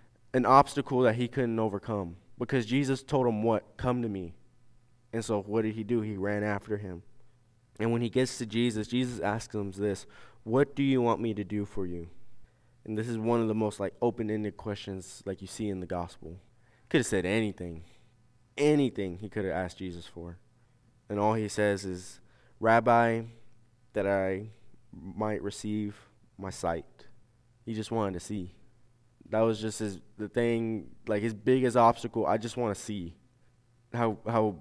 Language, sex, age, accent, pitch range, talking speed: English, male, 20-39, American, 100-120 Hz, 185 wpm